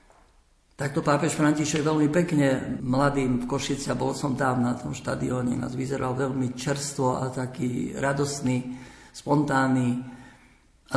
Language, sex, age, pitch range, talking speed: Slovak, male, 50-69, 130-155 Hz, 120 wpm